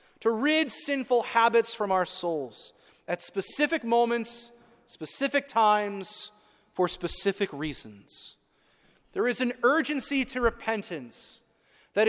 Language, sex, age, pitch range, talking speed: English, male, 30-49, 195-265 Hz, 110 wpm